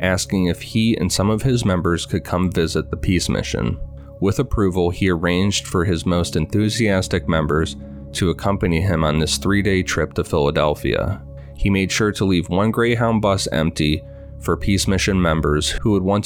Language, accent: English, American